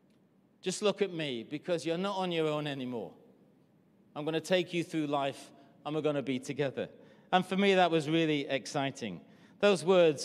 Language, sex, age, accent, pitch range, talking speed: English, male, 40-59, British, 150-180 Hz, 195 wpm